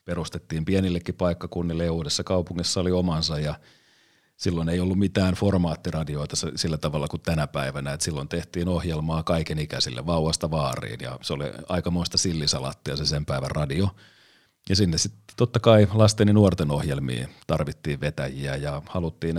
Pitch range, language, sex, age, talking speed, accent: 75-95 Hz, Finnish, male, 40-59, 150 wpm, native